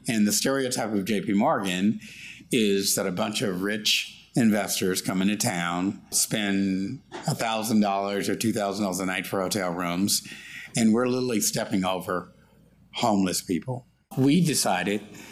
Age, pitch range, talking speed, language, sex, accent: 60-79, 100-120 Hz, 135 wpm, English, male, American